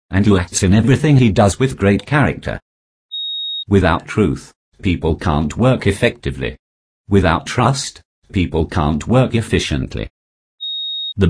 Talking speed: 120 wpm